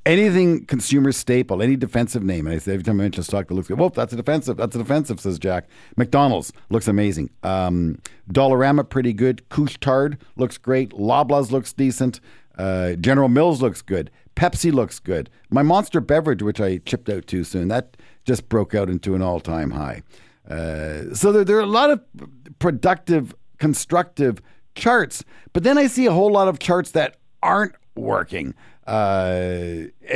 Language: English